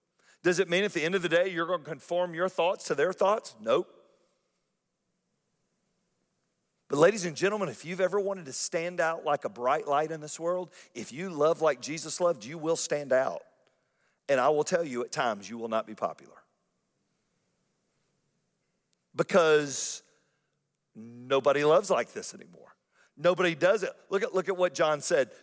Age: 40-59